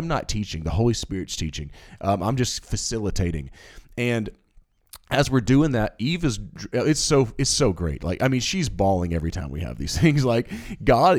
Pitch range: 95-130 Hz